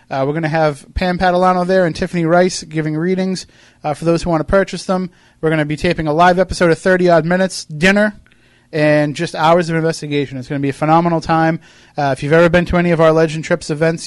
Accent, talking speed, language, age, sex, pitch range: American, 245 wpm, English, 30-49, male, 145-170 Hz